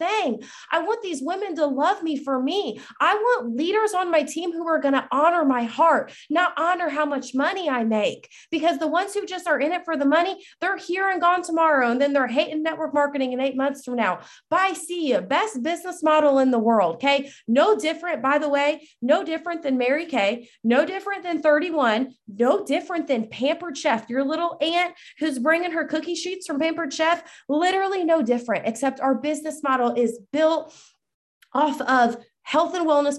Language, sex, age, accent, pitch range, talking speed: English, female, 30-49, American, 245-320 Hz, 200 wpm